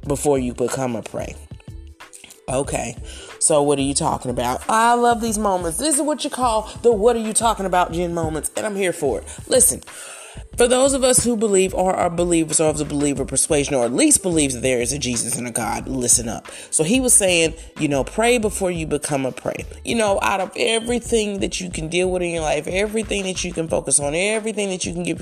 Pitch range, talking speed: 135-205 Hz, 235 wpm